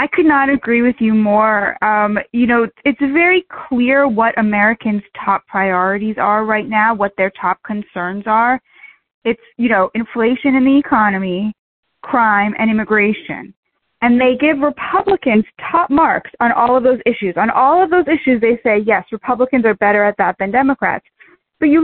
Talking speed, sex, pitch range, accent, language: 175 wpm, female, 220-290 Hz, American, English